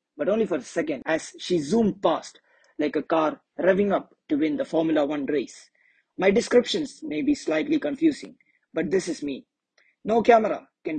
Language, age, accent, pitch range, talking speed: English, 30-49, Indian, 185-300 Hz, 180 wpm